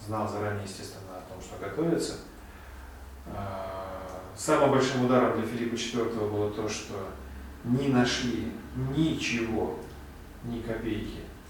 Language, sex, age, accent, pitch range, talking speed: Russian, male, 40-59, native, 105-125 Hz, 110 wpm